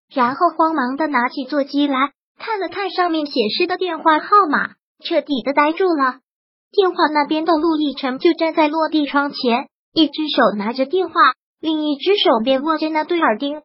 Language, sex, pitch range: Chinese, male, 275-335 Hz